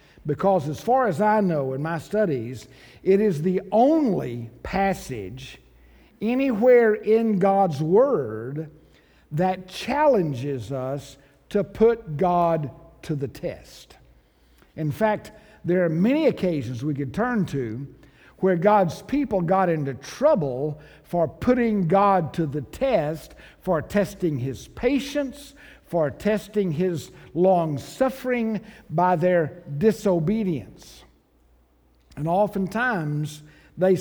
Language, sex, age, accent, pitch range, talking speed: English, male, 60-79, American, 145-215 Hz, 115 wpm